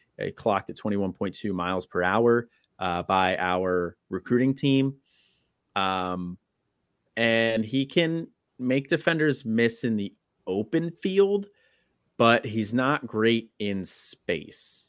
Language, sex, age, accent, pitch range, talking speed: English, male, 30-49, American, 90-115 Hz, 115 wpm